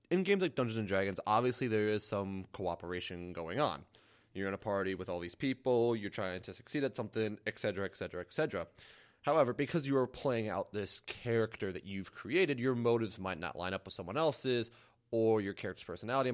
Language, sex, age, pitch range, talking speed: English, male, 30-49, 100-135 Hz, 195 wpm